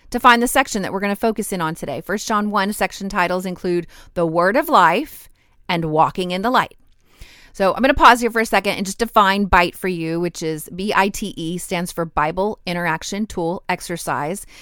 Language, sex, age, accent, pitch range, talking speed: English, female, 30-49, American, 170-205 Hz, 210 wpm